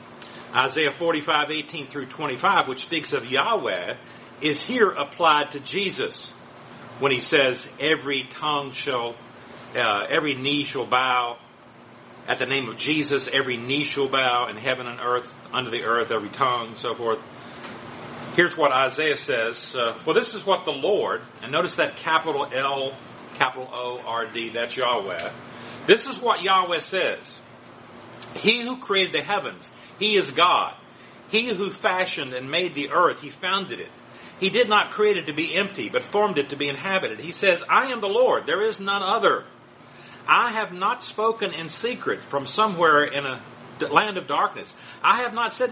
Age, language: 50-69, English